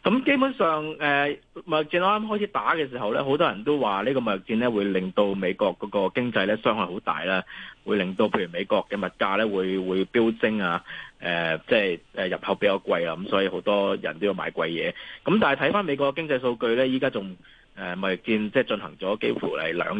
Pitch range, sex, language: 95-130 Hz, male, Chinese